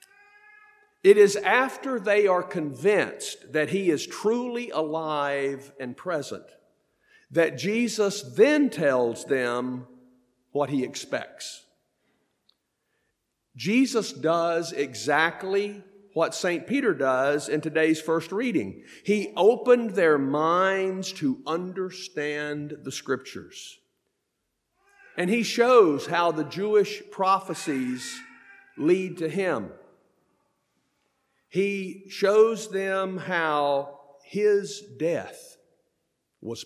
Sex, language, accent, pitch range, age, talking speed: male, English, American, 150-215 Hz, 50-69, 95 wpm